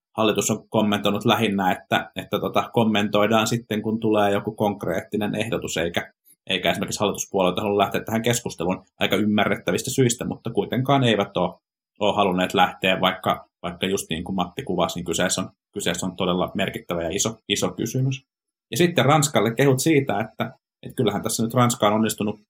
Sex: male